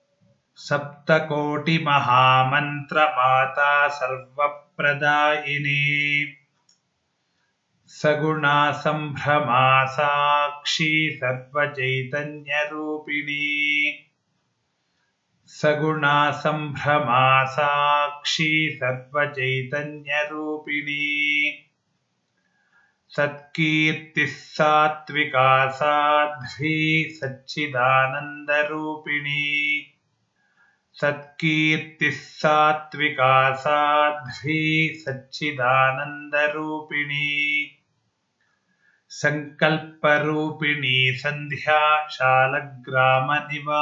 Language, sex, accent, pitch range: Kannada, male, native, 145-150 Hz